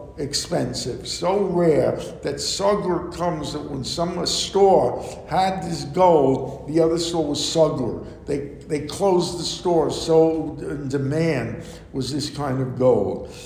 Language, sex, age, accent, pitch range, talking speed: English, male, 60-79, American, 145-185 Hz, 140 wpm